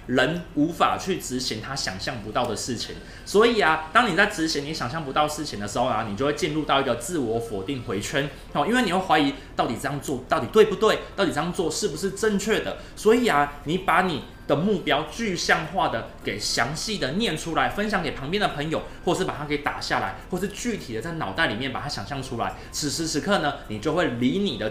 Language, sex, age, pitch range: Chinese, male, 20-39, 125-200 Hz